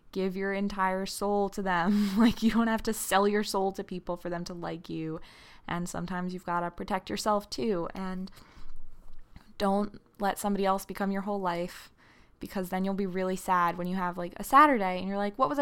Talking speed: 210 wpm